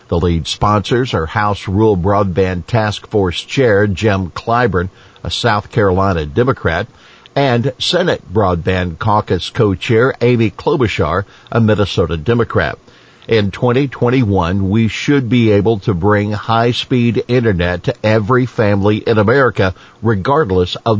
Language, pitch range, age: English, 95-120 Hz, 50-69